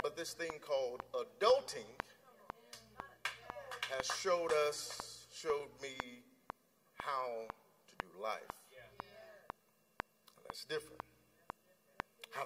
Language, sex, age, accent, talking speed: English, male, 50-69, American, 85 wpm